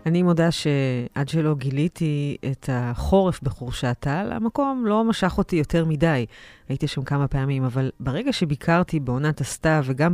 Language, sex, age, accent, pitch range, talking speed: Hebrew, female, 30-49, native, 130-170 Hz, 150 wpm